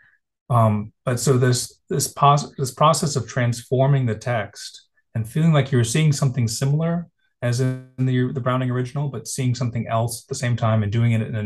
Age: 30-49